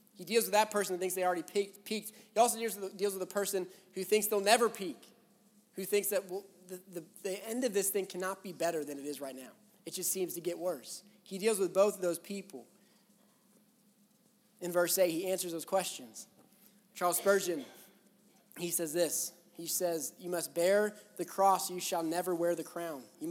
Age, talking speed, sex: 20-39, 205 wpm, male